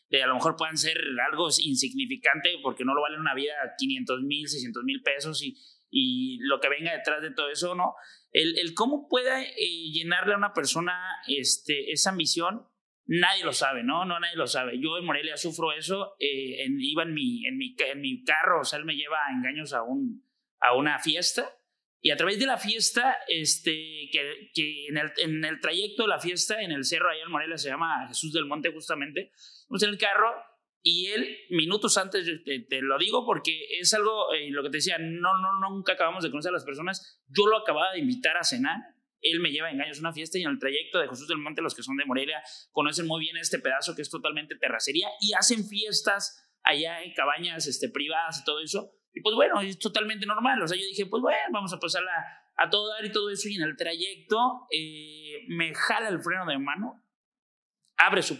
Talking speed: 220 wpm